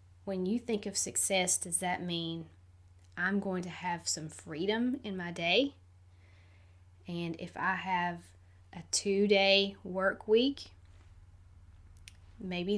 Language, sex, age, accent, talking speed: English, female, 20-39, American, 120 wpm